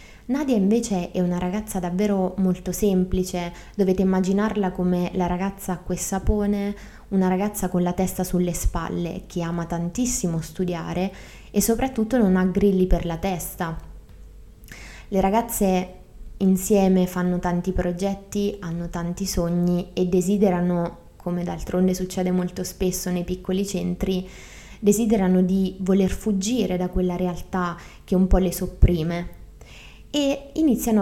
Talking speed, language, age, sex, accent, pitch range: 130 wpm, Italian, 20-39, female, native, 180-200 Hz